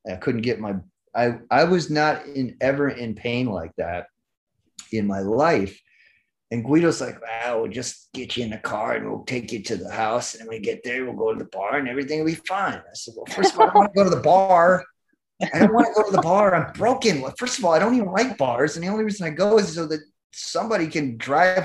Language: English